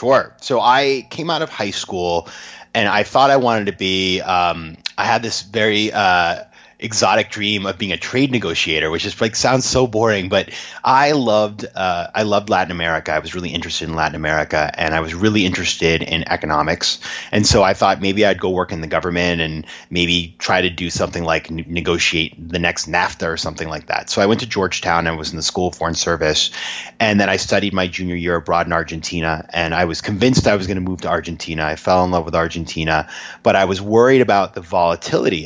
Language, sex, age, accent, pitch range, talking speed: English, male, 30-49, American, 80-100 Hz, 220 wpm